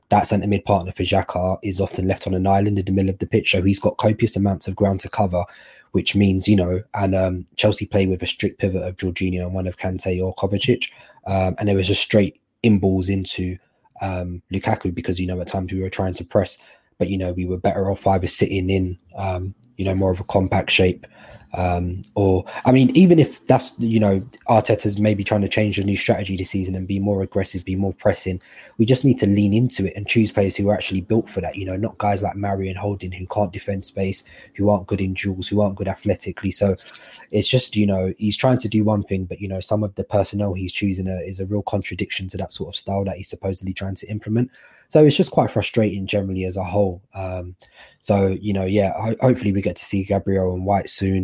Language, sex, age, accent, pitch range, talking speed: English, male, 20-39, British, 95-105 Hz, 240 wpm